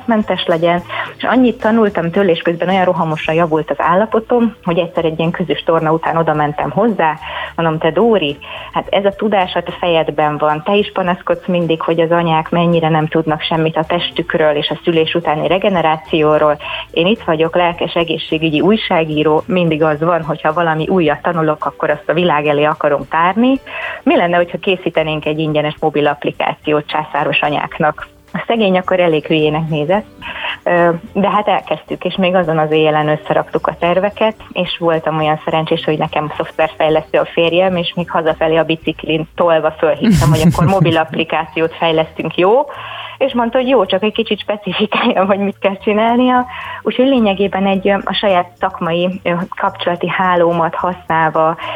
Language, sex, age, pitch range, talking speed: Hungarian, female, 30-49, 155-195 Hz, 165 wpm